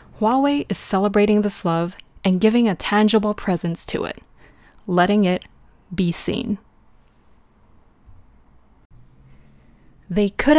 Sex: female